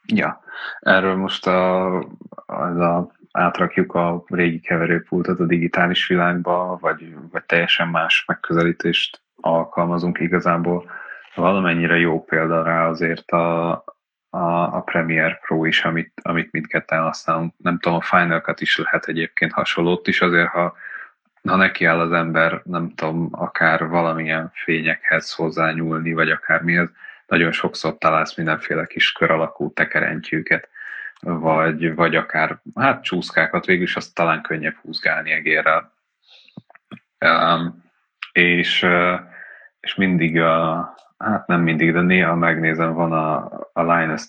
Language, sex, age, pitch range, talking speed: Hungarian, male, 20-39, 80-85 Hz, 130 wpm